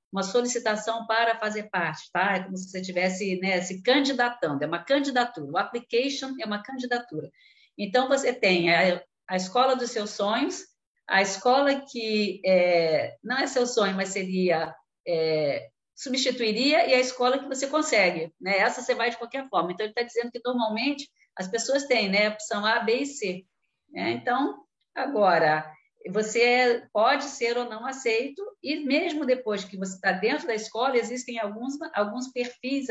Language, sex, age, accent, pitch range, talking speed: Portuguese, female, 50-69, Brazilian, 190-250 Hz, 170 wpm